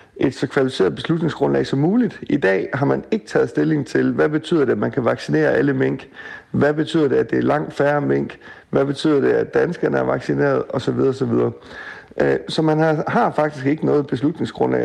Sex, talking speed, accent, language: male, 210 wpm, native, Danish